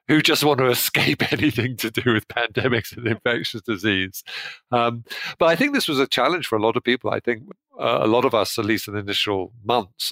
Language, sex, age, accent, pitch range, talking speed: English, male, 50-69, British, 95-120 Hz, 225 wpm